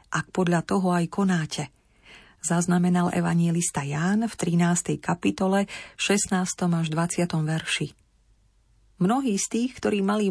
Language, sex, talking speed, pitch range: Slovak, female, 115 wpm, 165-210 Hz